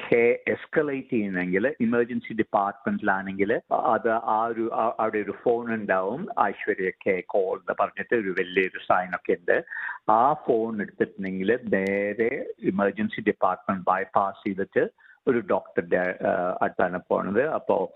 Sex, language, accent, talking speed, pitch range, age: male, Malayalam, native, 95 wpm, 110-170 Hz, 50-69